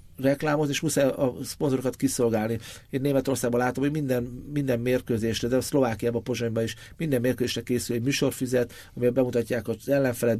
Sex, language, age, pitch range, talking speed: male, Hungarian, 50-69, 115-130 Hz, 160 wpm